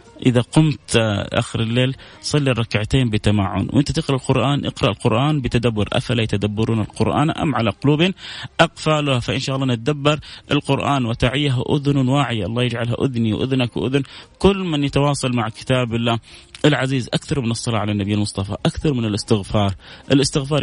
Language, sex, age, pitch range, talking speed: Arabic, male, 30-49, 105-135 Hz, 150 wpm